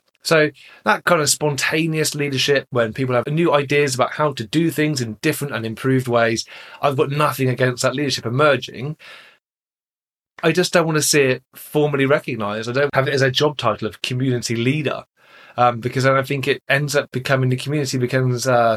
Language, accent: English, British